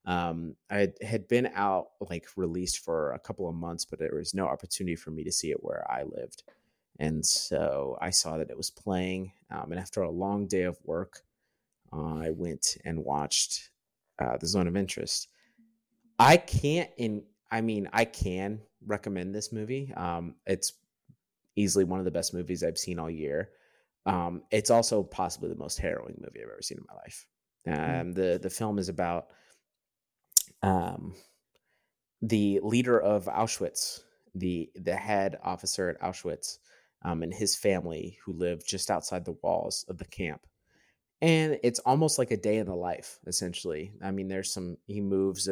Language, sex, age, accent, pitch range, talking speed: English, male, 30-49, American, 85-105 Hz, 175 wpm